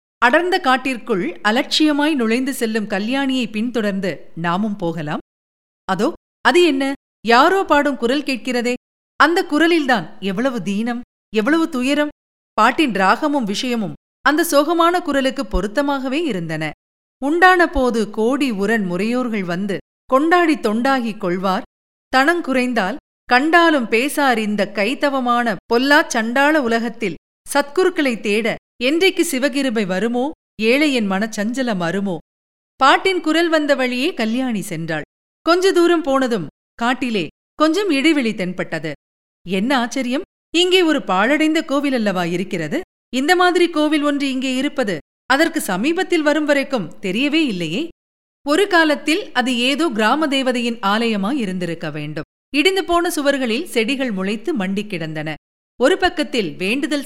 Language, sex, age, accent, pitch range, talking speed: Tamil, female, 40-59, native, 210-295 Hz, 110 wpm